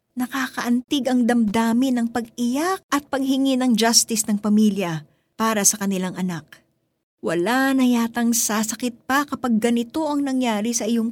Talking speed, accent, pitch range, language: 140 wpm, native, 210-270 Hz, Filipino